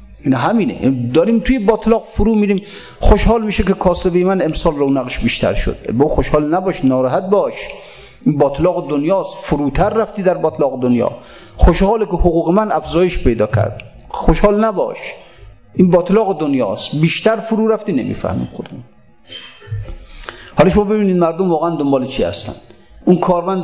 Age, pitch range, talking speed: 50-69, 145-185 Hz, 140 wpm